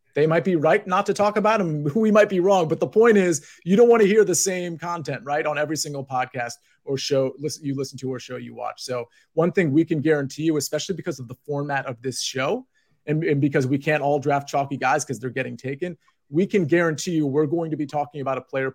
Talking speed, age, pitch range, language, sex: 255 wpm, 30-49, 130-160 Hz, English, male